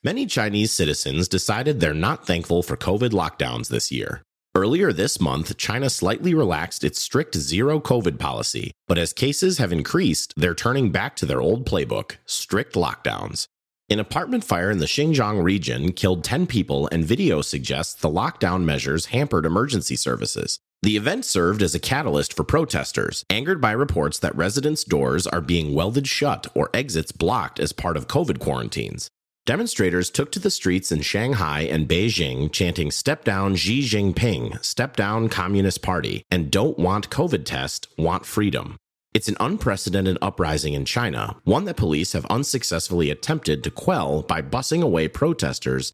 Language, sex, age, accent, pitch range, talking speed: English, male, 30-49, American, 80-120 Hz, 160 wpm